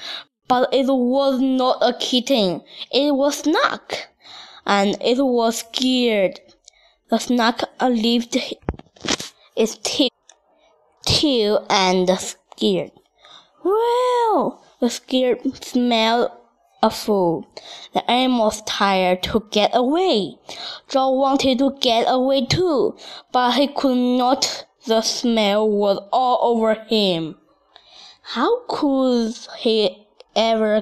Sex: female